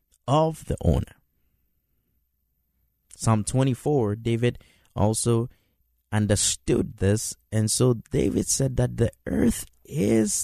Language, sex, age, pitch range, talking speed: English, male, 20-39, 80-120 Hz, 100 wpm